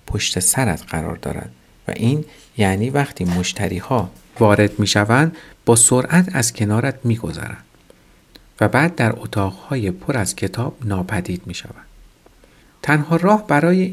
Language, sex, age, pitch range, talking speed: Persian, male, 50-69, 100-145 Hz, 125 wpm